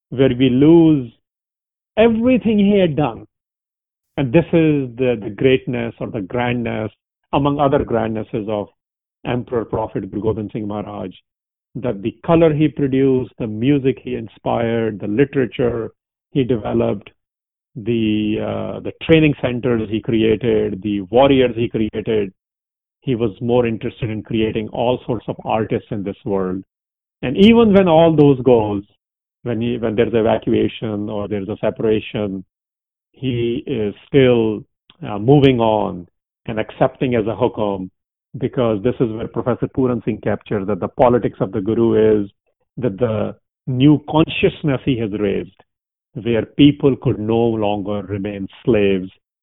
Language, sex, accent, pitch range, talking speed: English, male, Indian, 105-135 Hz, 140 wpm